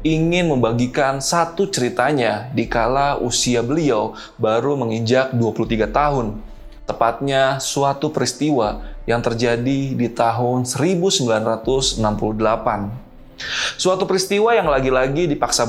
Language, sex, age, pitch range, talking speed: Indonesian, male, 20-39, 115-150 Hz, 95 wpm